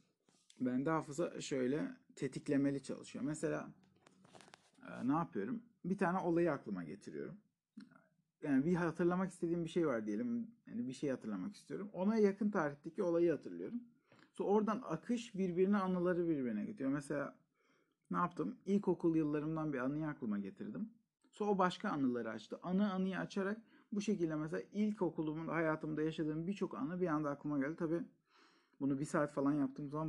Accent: native